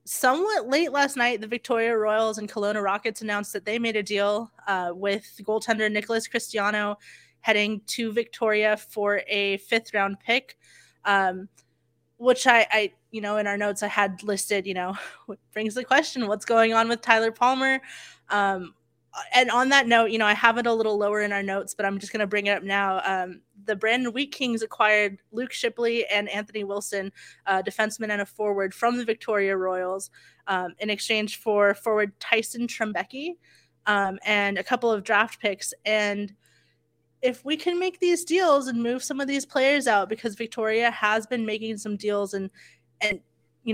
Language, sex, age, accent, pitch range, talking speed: English, female, 20-39, American, 195-230 Hz, 185 wpm